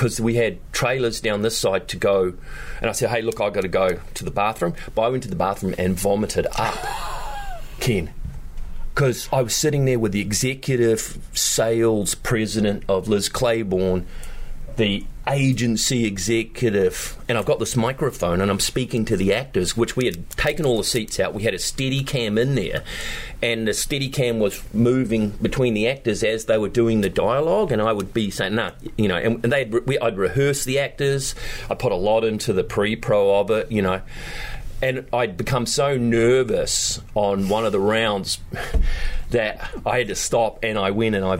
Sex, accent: male, Australian